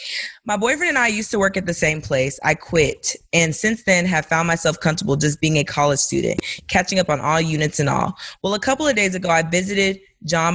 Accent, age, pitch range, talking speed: American, 20-39, 150-190 Hz, 235 wpm